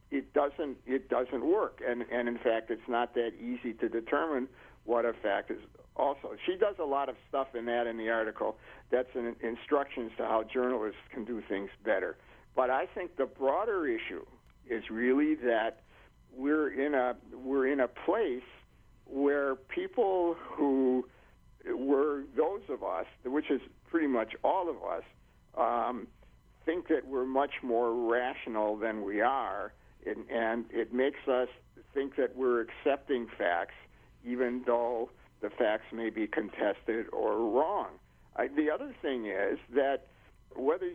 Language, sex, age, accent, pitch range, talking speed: English, male, 60-79, American, 115-150 Hz, 155 wpm